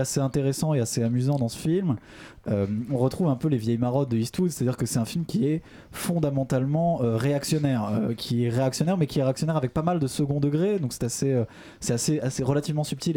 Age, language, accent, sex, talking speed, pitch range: 20-39, French, French, male, 240 wpm, 120-155 Hz